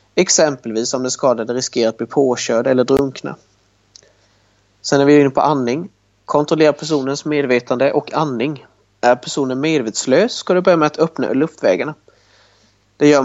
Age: 30-49